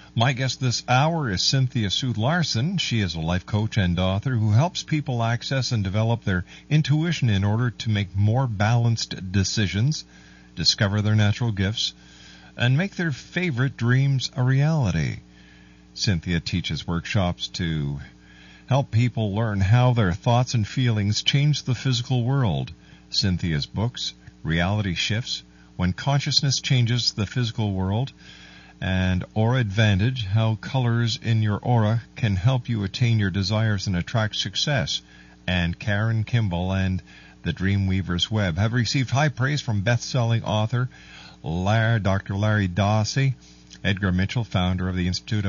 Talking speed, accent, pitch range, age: 145 wpm, American, 90-125 Hz, 50-69